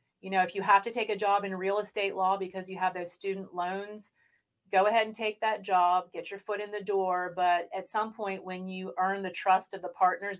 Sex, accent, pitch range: female, American, 175-200 Hz